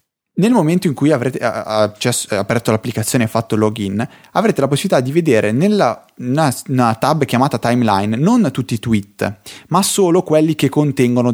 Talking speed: 165 wpm